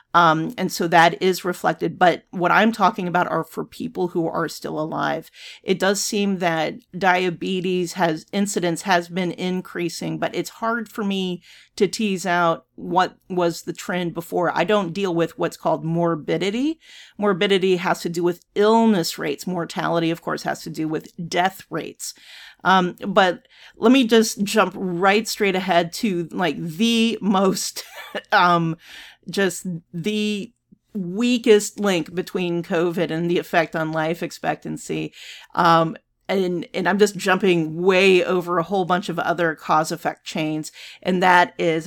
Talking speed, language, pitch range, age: 155 wpm, English, 170-200 Hz, 40-59